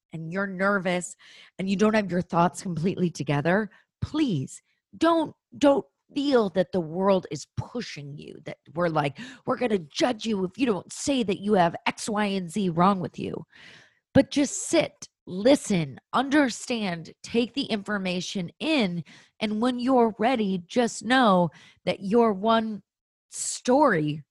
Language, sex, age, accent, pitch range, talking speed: English, female, 30-49, American, 160-225 Hz, 155 wpm